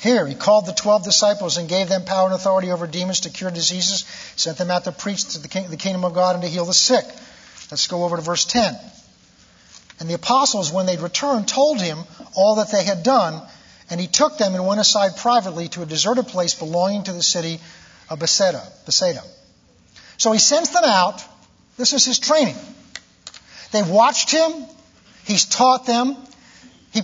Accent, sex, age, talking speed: American, male, 50-69, 195 wpm